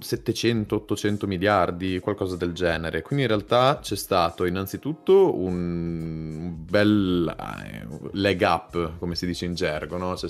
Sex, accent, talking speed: male, native, 140 wpm